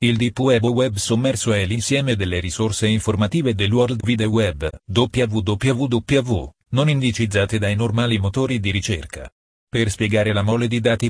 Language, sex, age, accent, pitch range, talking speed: Italian, male, 40-59, native, 105-120 Hz, 155 wpm